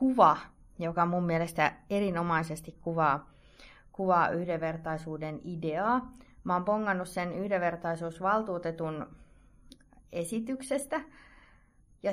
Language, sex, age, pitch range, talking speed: Finnish, female, 30-49, 175-235 Hz, 80 wpm